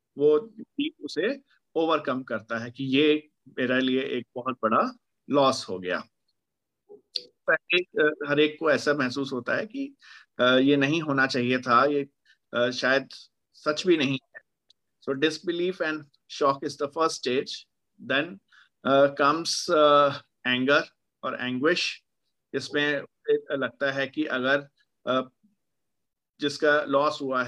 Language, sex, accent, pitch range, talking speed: Hindi, male, native, 130-155 Hz, 105 wpm